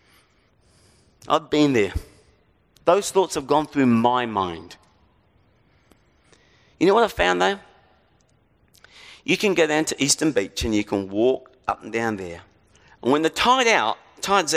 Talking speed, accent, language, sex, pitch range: 150 wpm, British, English, male, 105-165 Hz